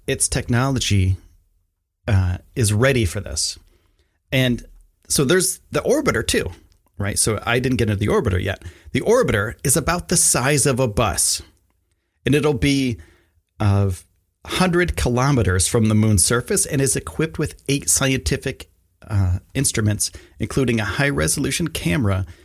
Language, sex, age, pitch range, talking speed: English, male, 30-49, 90-125 Hz, 140 wpm